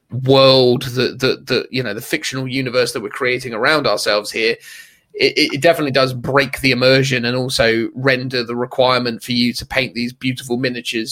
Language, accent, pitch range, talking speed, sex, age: English, British, 125-145 Hz, 185 wpm, male, 30-49